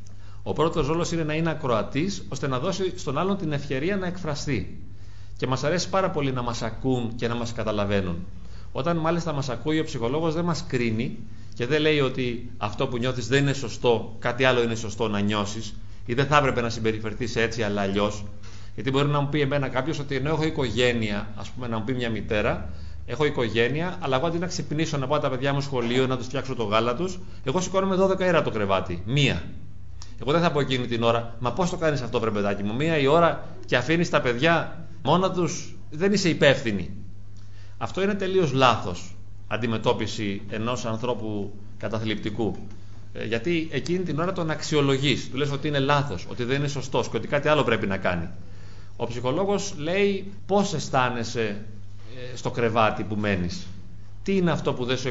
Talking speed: 190 wpm